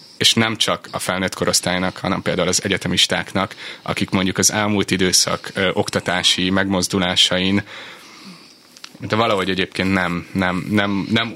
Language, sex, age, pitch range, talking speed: Hungarian, male, 30-49, 95-105 Hz, 115 wpm